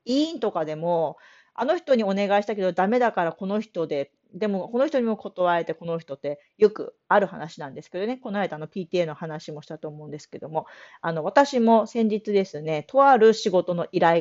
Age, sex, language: 40-59, female, Japanese